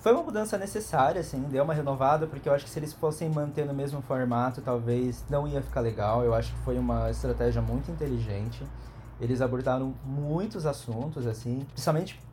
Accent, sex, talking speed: Brazilian, male, 185 wpm